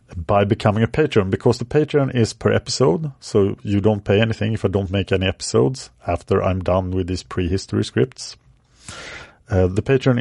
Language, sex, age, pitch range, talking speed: English, male, 50-69, 95-120 Hz, 180 wpm